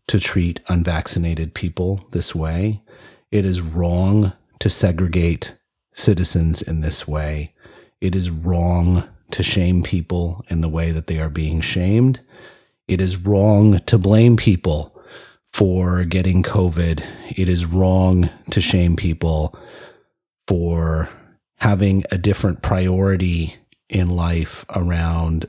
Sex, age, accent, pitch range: male, 30-49, American, 80-100 Hz